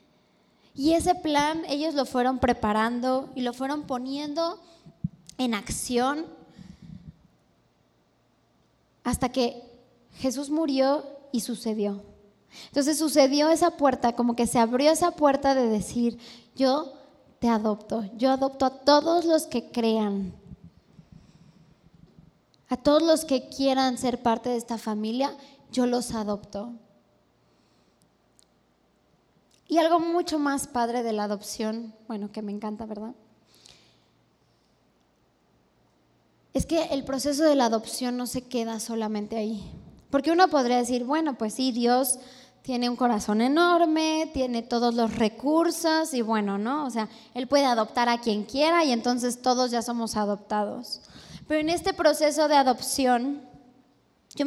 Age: 20-39